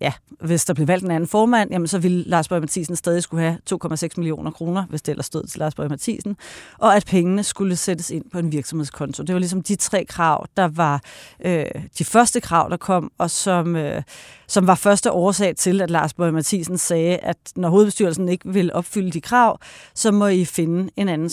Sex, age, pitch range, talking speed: female, 30-49, 165-195 Hz, 215 wpm